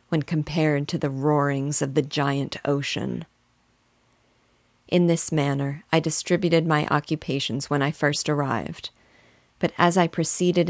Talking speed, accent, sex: 135 wpm, American, female